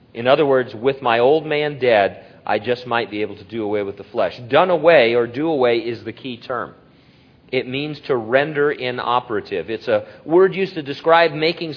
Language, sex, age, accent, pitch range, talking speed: English, male, 40-59, American, 105-140 Hz, 205 wpm